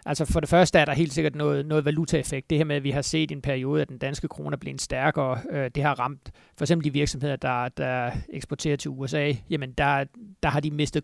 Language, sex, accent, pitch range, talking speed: Danish, male, native, 140-160 Hz, 250 wpm